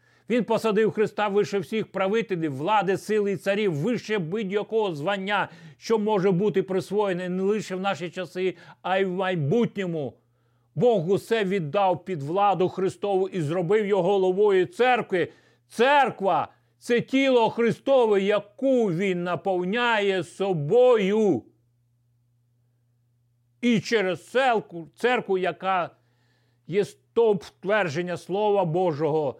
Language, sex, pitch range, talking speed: Ukrainian, male, 120-190 Hz, 110 wpm